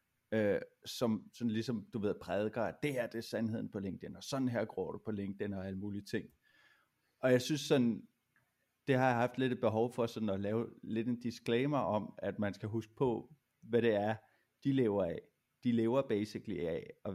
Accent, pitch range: native, 100-120 Hz